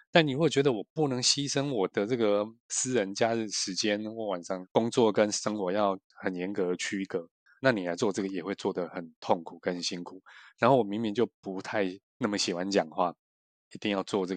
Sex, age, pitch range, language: male, 20-39, 90-115 Hz, Chinese